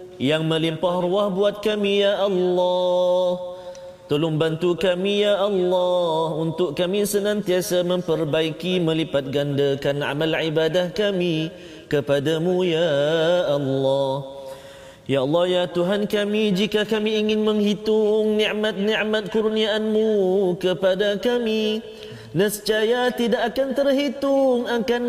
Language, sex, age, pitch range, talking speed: Malayalam, male, 30-49, 160-205 Hz, 100 wpm